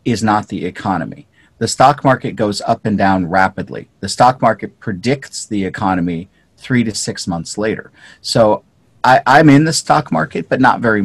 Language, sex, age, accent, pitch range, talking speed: English, male, 40-59, American, 100-125 Hz, 175 wpm